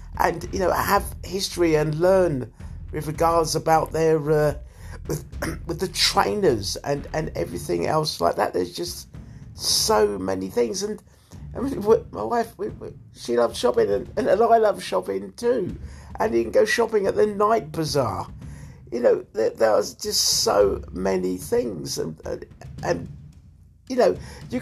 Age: 50-69